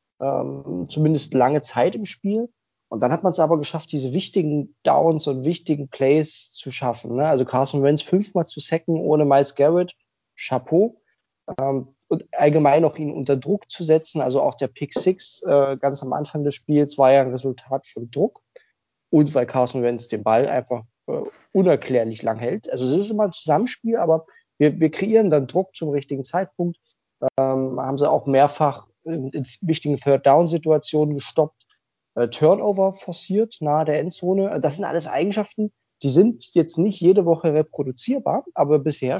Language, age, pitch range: German, 20-39, 135-175 Hz